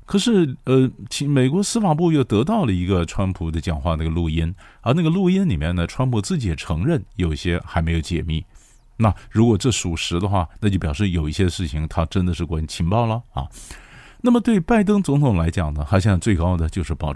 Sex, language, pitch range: male, Chinese, 85-120 Hz